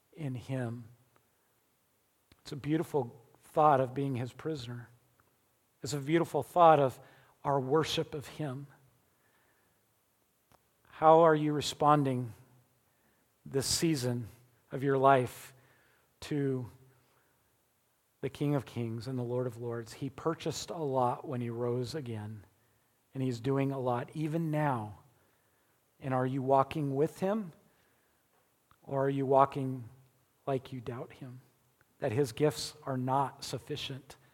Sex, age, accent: male, 40-59, American